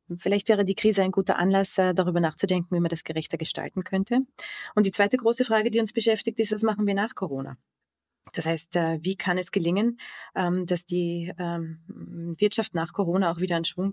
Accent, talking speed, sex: German, 190 wpm, female